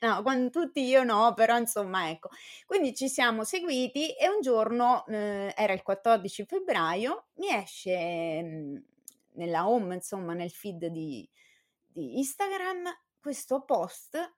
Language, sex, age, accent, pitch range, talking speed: Italian, female, 30-49, native, 185-245 Hz, 140 wpm